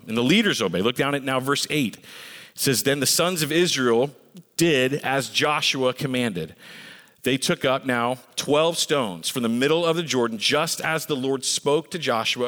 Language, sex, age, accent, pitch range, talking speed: English, male, 40-59, American, 120-150 Hz, 190 wpm